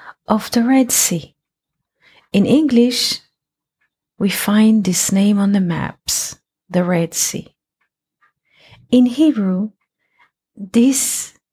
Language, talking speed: English, 100 wpm